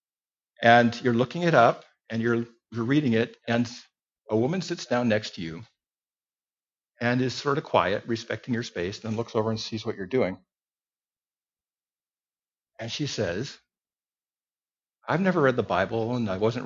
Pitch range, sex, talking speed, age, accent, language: 110-130 Hz, male, 160 wpm, 50-69, American, English